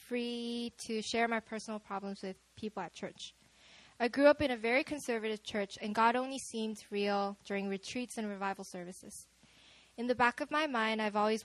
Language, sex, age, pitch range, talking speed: English, female, 10-29, 205-245 Hz, 190 wpm